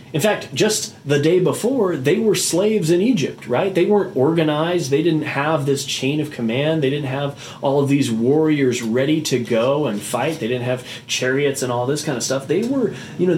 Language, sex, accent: English, male, American